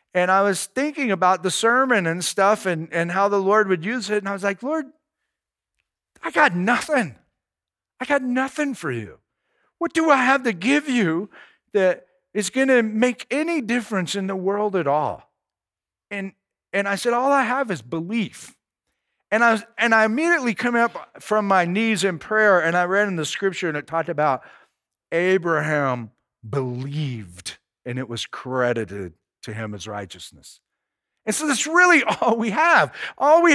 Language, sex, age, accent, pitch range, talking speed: English, male, 50-69, American, 180-250 Hz, 180 wpm